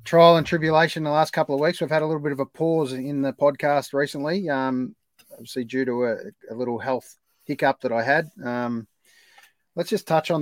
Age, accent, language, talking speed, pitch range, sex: 30-49, Australian, English, 220 wpm, 120-145 Hz, male